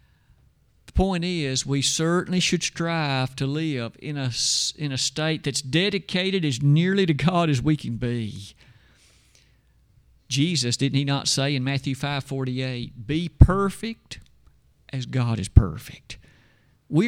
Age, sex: 50-69, male